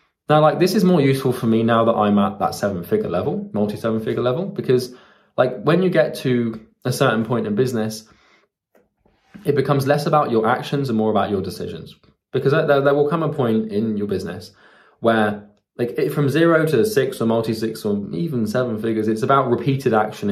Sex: male